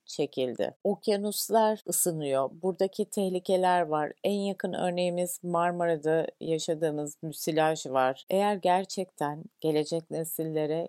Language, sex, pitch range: Turkish, female, 150-180 Hz